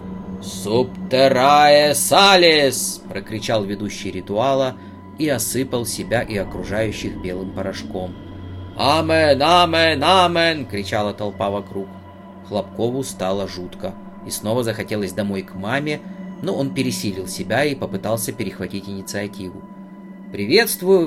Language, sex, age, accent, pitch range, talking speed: Russian, male, 30-49, native, 100-130 Hz, 105 wpm